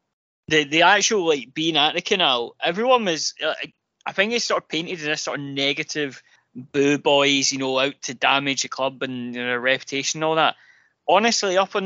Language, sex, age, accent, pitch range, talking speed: English, male, 20-39, British, 130-180 Hz, 215 wpm